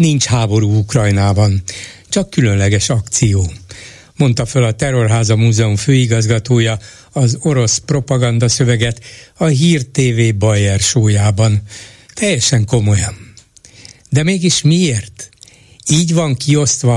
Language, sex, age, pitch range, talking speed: Hungarian, male, 60-79, 110-140 Hz, 105 wpm